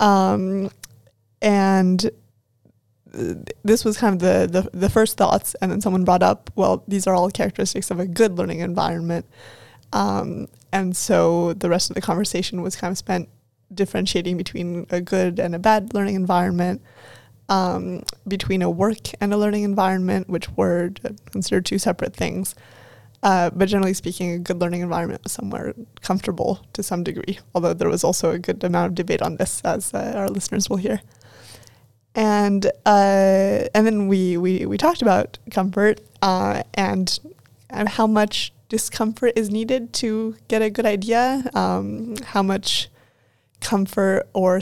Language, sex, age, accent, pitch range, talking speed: English, female, 20-39, American, 175-205 Hz, 165 wpm